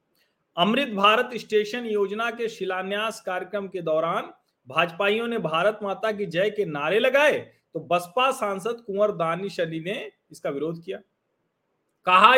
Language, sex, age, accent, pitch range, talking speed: Hindi, male, 40-59, native, 140-210 Hz, 140 wpm